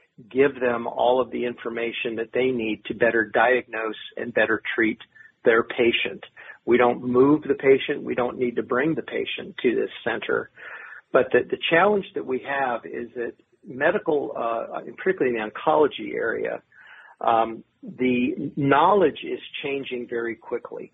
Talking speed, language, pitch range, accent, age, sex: 160 wpm, English, 120-195 Hz, American, 50-69, male